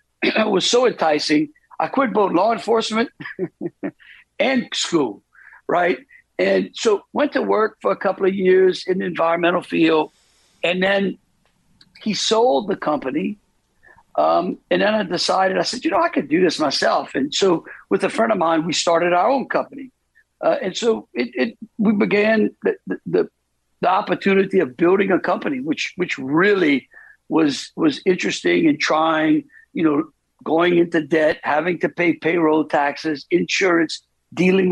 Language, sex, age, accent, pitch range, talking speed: English, male, 60-79, American, 165-235 Hz, 160 wpm